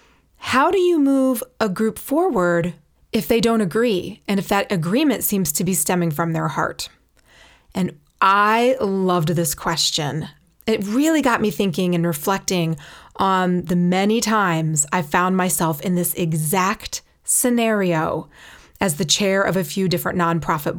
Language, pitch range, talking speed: English, 175-235 Hz, 155 wpm